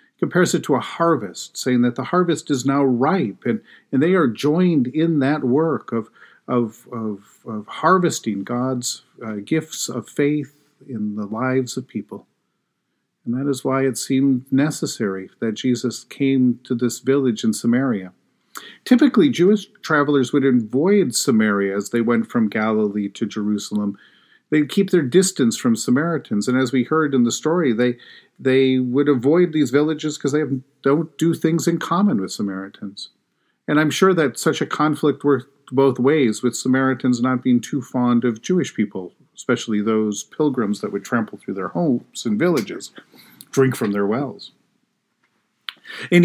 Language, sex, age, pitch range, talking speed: English, male, 50-69, 120-160 Hz, 165 wpm